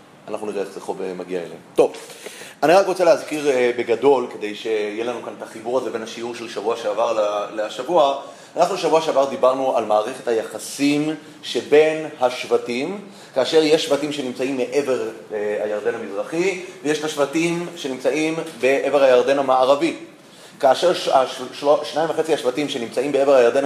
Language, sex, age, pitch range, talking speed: Hebrew, male, 30-49, 130-155 Hz, 155 wpm